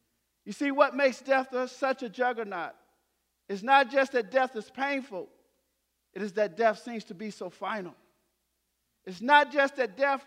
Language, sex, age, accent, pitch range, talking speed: English, male, 50-69, American, 210-265 Hz, 170 wpm